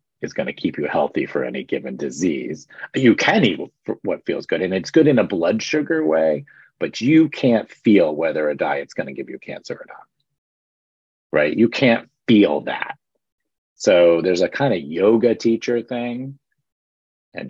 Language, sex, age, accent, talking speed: English, male, 40-59, American, 170 wpm